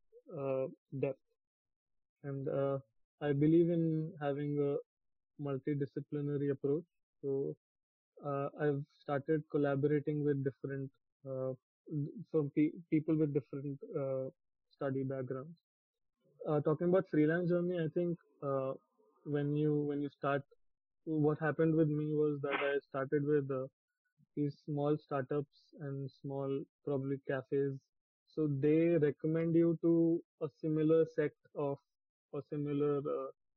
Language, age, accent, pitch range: English, 20-39, Indian, 140-155 Hz